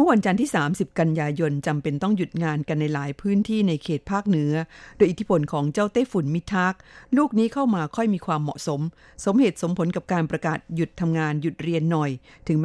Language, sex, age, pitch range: Thai, female, 50-69, 155-210 Hz